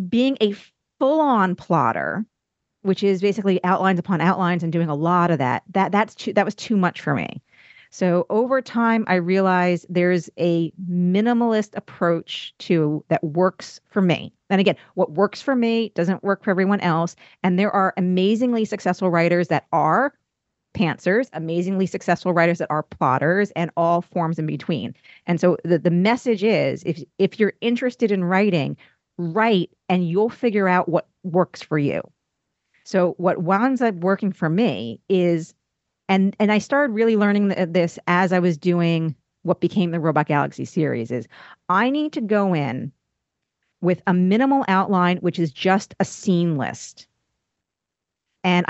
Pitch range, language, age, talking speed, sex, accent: 175-205 Hz, English, 40-59, 165 wpm, female, American